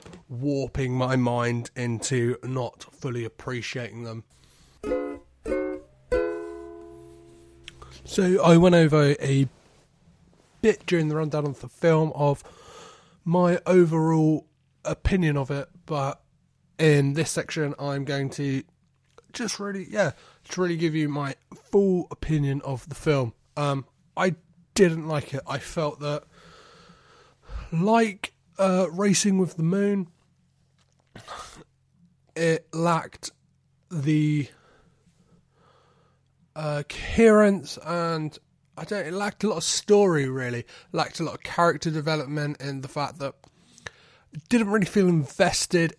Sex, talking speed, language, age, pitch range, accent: male, 115 wpm, English, 30-49, 135-170 Hz, British